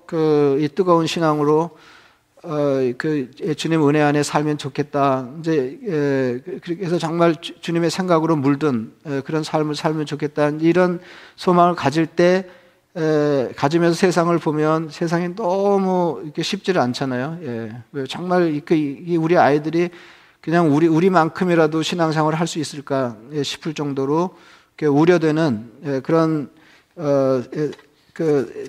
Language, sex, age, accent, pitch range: Korean, male, 40-59, native, 145-175 Hz